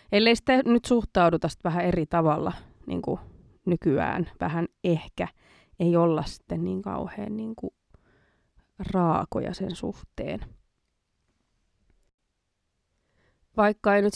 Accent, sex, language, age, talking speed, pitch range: native, female, Finnish, 20-39, 110 wpm, 170-200 Hz